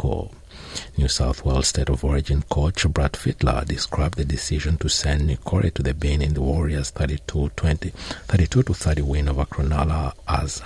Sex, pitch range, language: male, 70-110 Hz, English